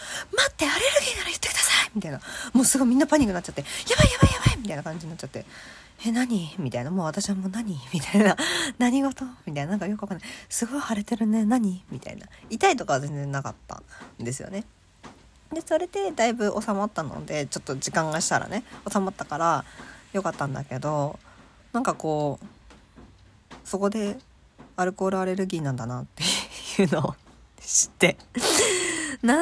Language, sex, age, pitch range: Japanese, female, 40-59, 150-235 Hz